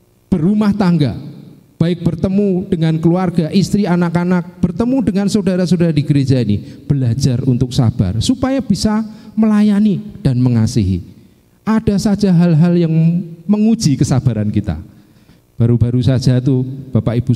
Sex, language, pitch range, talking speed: male, Indonesian, 105-145 Hz, 115 wpm